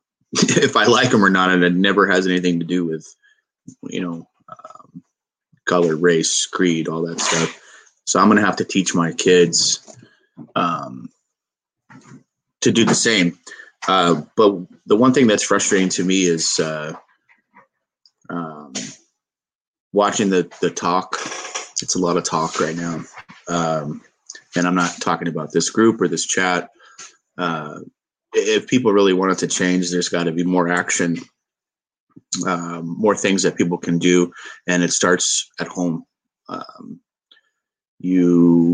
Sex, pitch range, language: male, 85-95 Hz, English